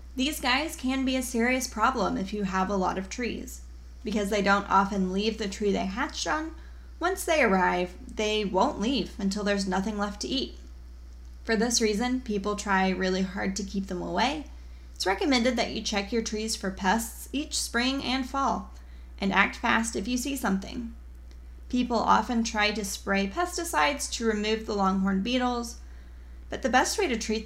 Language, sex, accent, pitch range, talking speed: English, female, American, 185-230 Hz, 185 wpm